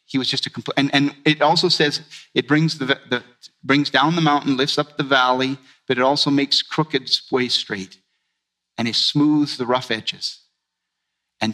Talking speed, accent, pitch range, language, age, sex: 185 wpm, American, 120-145 Hz, English, 40-59, male